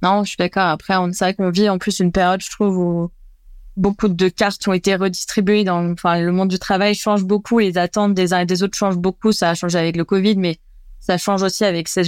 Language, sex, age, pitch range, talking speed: French, female, 20-39, 175-205 Hz, 255 wpm